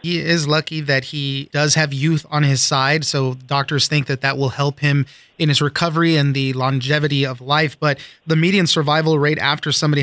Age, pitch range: 30-49, 140-160 Hz